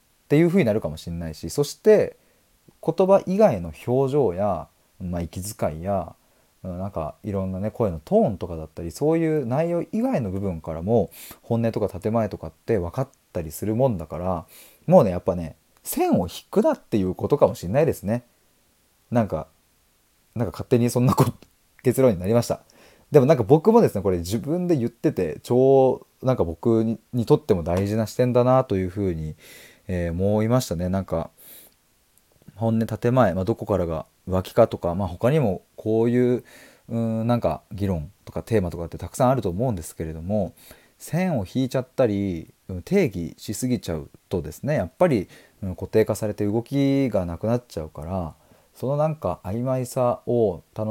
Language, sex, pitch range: Japanese, male, 90-125 Hz